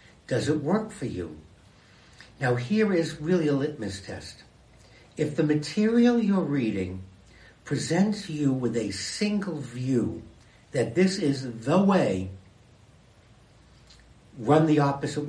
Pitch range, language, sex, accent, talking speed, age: 110-160 Hz, English, male, American, 120 wpm, 60-79